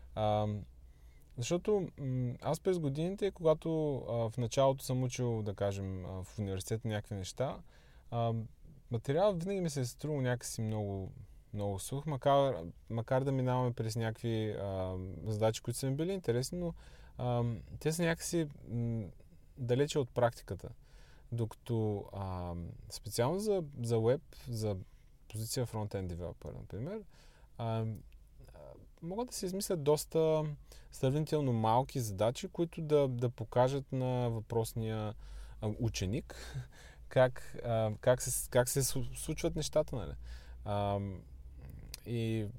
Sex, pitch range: male, 105-140 Hz